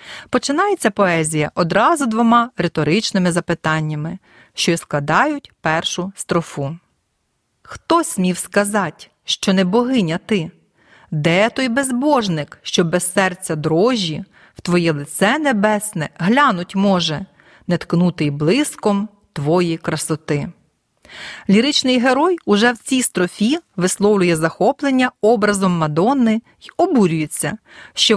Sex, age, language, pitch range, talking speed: female, 30-49, Ukrainian, 170-235 Hz, 100 wpm